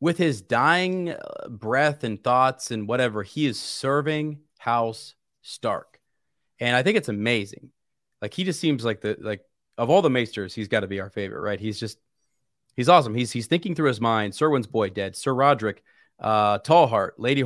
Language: English